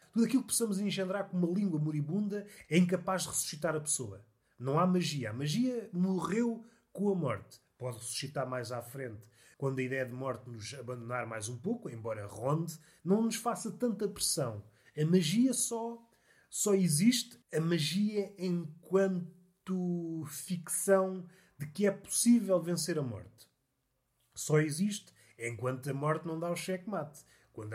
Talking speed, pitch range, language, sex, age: 155 wpm, 135-200 Hz, Portuguese, male, 30-49